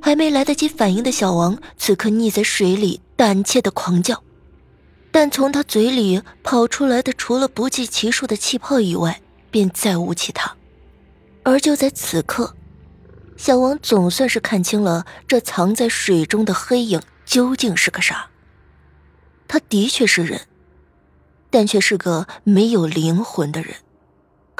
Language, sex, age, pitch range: Chinese, female, 20-39, 175-250 Hz